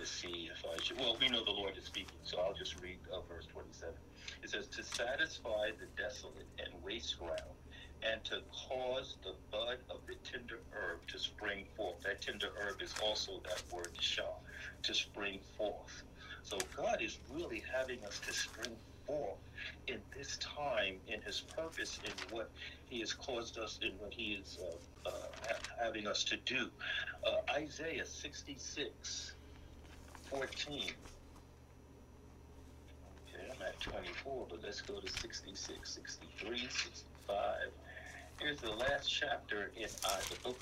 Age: 50-69